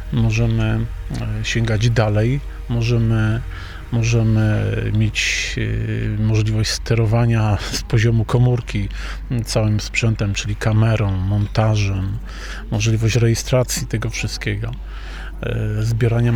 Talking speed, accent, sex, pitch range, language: 75 wpm, native, male, 110-120 Hz, Polish